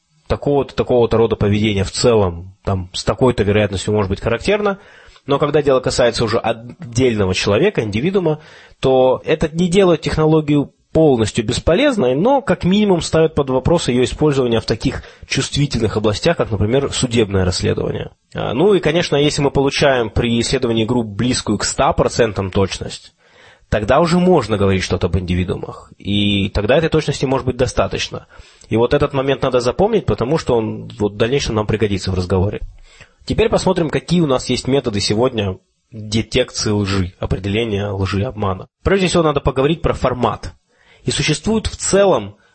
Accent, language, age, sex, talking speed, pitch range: native, Russian, 20-39, male, 155 wpm, 105-145 Hz